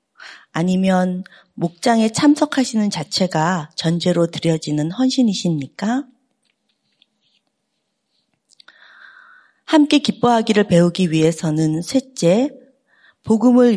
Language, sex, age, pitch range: Korean, female, 40-59, 170-240 Hz